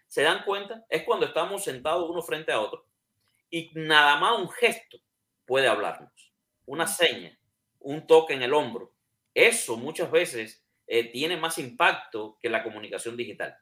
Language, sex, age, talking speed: Spanish, male, 30-49, 160 wpm